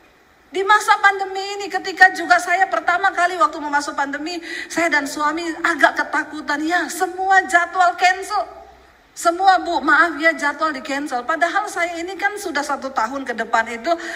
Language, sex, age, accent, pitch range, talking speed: Indonesian, female, 40-59, native, 295-380 Hz, 160 wpm